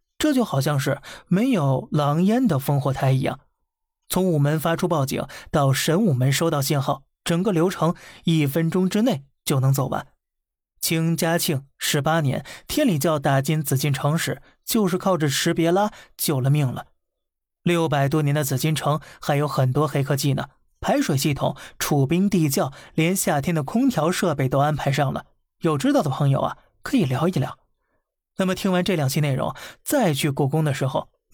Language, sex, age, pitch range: Chinese, male, 20-39, 140-180 Hz